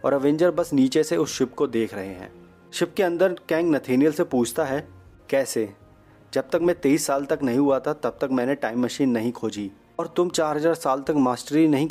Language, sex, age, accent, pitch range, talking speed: Hindi, male, 30-49, native, 115-150 Hz, 200 wpm